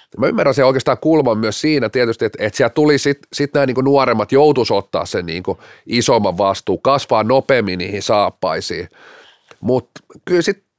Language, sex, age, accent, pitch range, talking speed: Finnish, male, 30-49, native, 120-160 Hz, 170 wpm